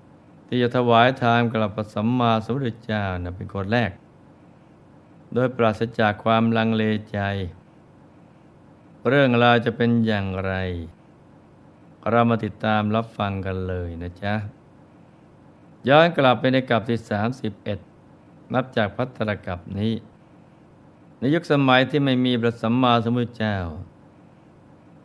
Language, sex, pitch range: Thai, male, 100-125 Hz